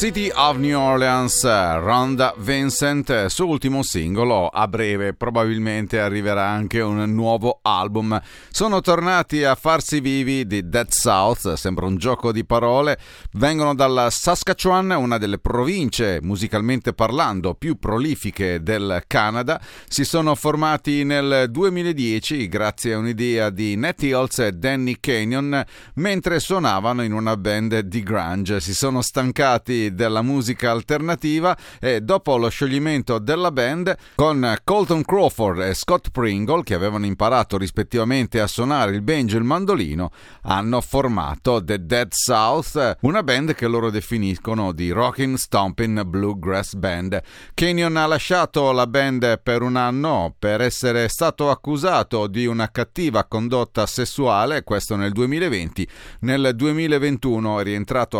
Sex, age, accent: male, 40-59, native